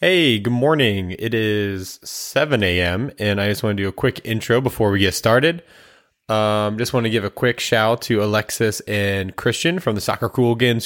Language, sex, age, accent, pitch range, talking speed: English, male, 20-39, American, 100-125 Hz, 200 wpm